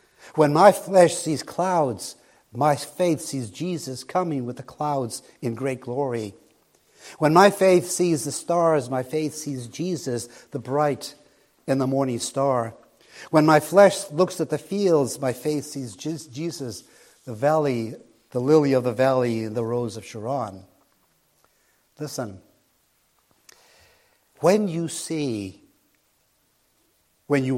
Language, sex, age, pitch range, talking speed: English, male, 60-79, 125-160 Hz, 135 wpm